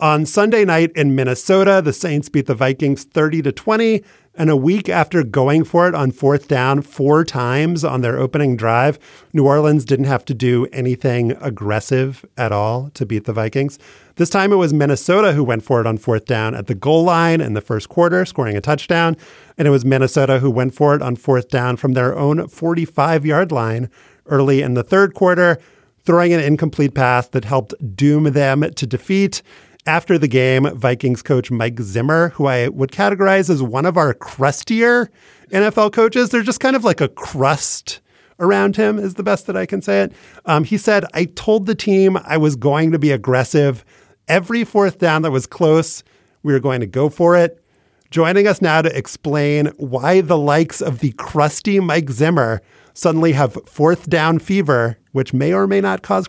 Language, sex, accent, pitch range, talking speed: English, male, American, 130-175 Hz, 195 wpm